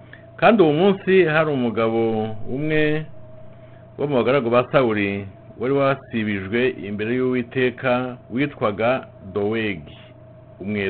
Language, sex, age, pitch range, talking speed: English, male, 50-69, 110-135 Hz, 100 wpm